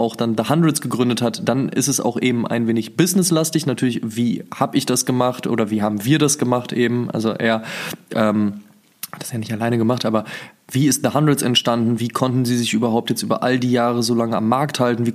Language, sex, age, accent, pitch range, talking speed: German, male, 20-39, German, 115-135 Hz, 235 wpm